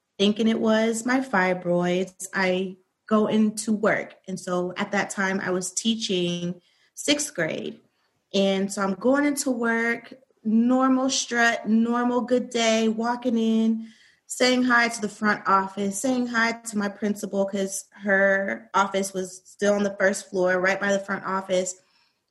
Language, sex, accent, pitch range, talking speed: English, female, American, 190-230 Hz, 155 wpm